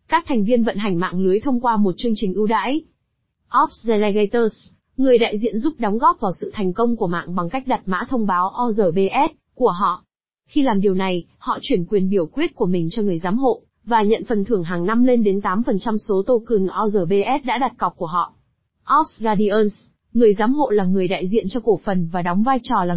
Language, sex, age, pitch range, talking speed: Vietnamese, female, 20-39, 190-245 Hz, 225 wpm